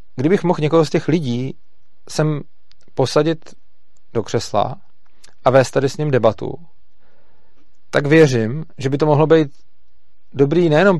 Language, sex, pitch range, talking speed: Czech, male, 115-145 Hz, 135 wpm